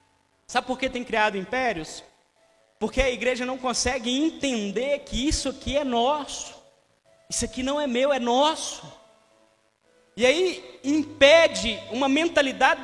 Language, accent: Portuguese, Brazilian